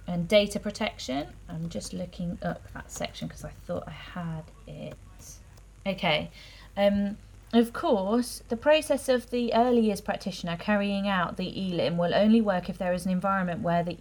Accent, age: British, 30-49